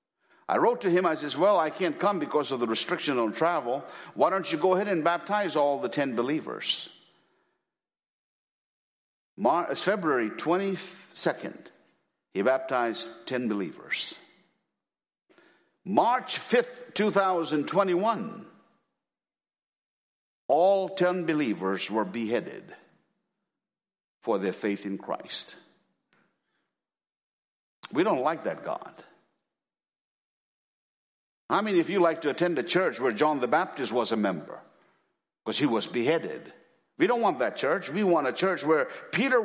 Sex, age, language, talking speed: male, 60-79, English, 125 wpm